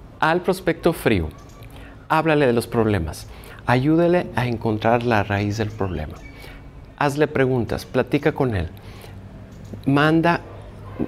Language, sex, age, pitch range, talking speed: Spanish, male, 50-69, 110-155 Hz, 110 wpm